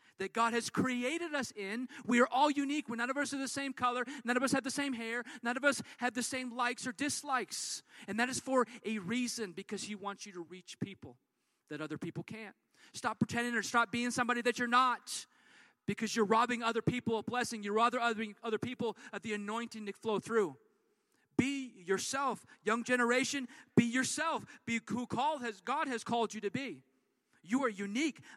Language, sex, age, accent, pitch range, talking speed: English, male, 40-59, American, 200-255 Hz, 195 wpm